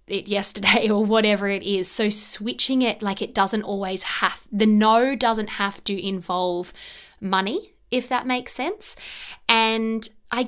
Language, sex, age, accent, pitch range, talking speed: English, female, 20-39, Australian, 195-230 Hz, 155 wpm